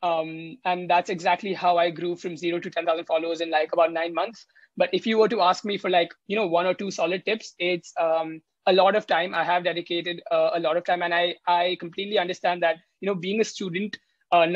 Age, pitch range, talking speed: 20-39, 170-200 Hz, 245 wpm